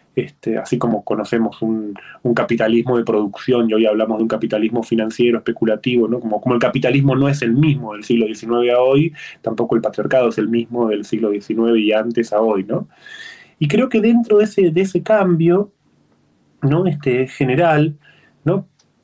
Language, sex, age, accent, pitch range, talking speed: Spanish, male, 20-39, Argentinian, 115-165 Hz, 185 wpm